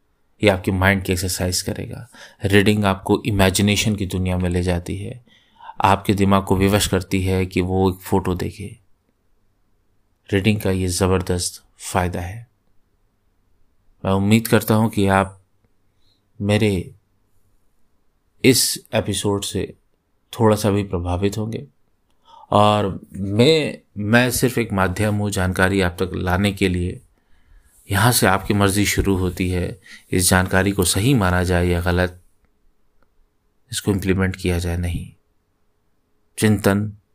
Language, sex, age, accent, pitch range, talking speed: Hindi, male, 30-49, native, 90-105 Hz, 130 wpm